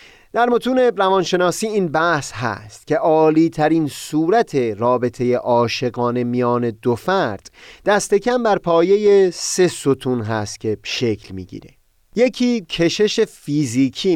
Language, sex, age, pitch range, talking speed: Persian, male, 30-49, 125-185 Hz, 120 wpm